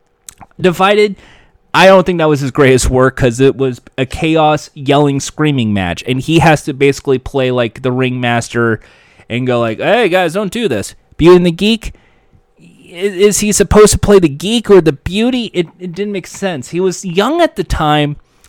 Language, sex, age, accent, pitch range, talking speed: English, male, 20-39, American, 135-190 Hz, 195 wpm